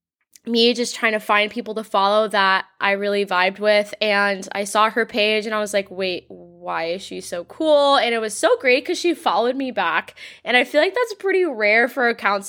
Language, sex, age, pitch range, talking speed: English, female, 10-29, 210-280 Hz, 225 wpm